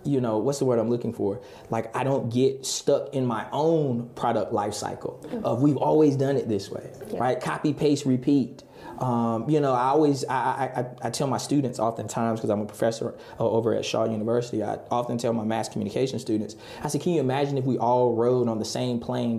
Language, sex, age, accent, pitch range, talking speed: English, male, 20-39, American, 120-155 Hz, 215 wpm